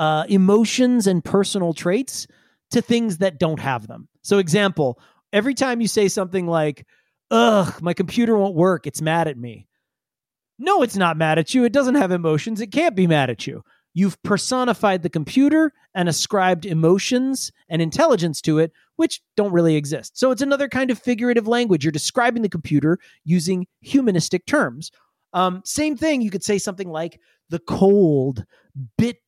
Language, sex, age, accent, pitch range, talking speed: English, male, 30-49, American, 150-205 Hz, 170 wpm